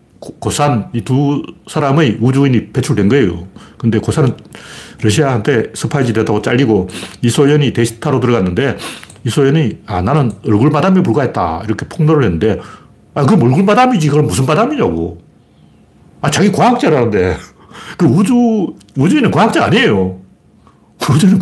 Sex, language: male, Korean